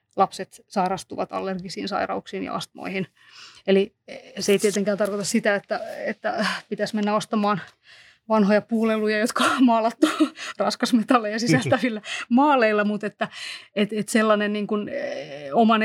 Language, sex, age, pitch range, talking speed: Finnish, female, 30-49, 200-220 Hz, 115 wpm